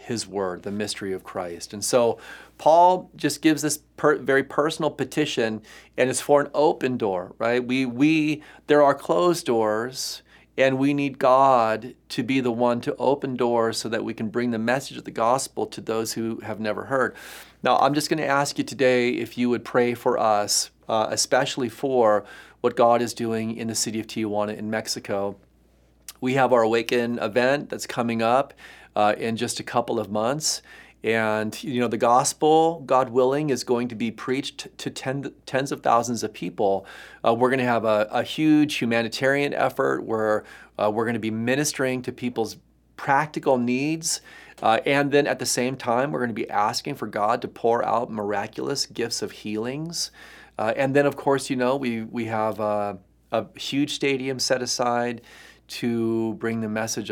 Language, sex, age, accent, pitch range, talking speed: English, male, 40-59, American, 110-135 Hz, 185 wpm